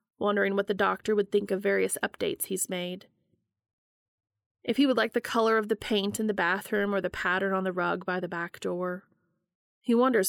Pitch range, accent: 185-215 Hz, American